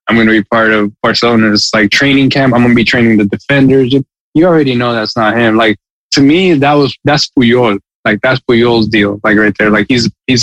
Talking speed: 225 wpm